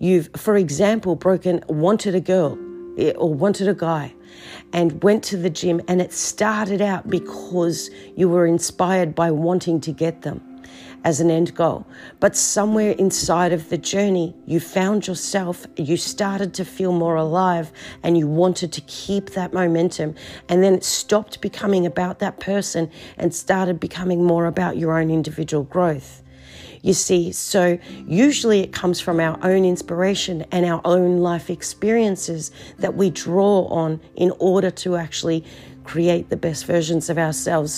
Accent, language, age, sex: Australian, English, 40-59, female